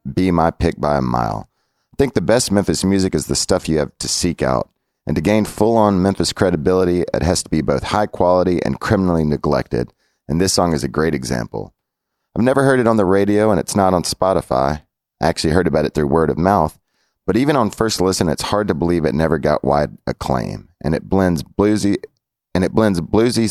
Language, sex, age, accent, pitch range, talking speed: English, male, 30-49, American, 75-95 Hz, 220 wpm